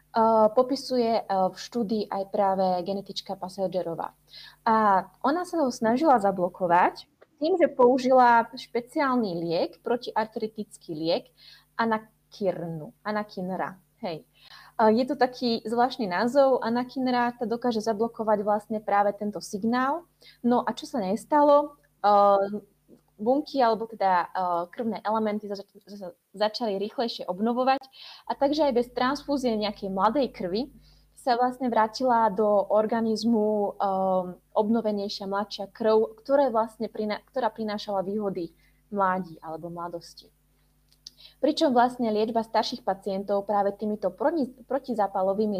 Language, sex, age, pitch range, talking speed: Czech, female, 20-39, 195-245 Hz, 110 wpm